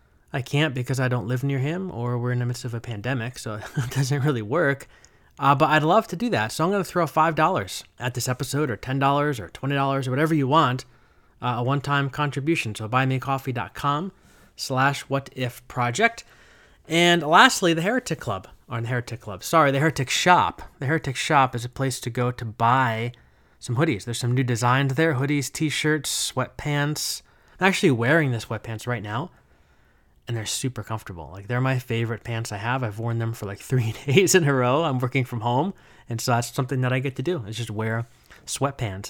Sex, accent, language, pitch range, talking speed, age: male, American, English, 120-150 Hz, 200 wpm, 30-49